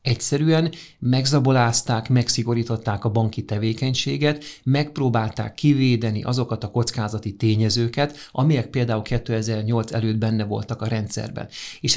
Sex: male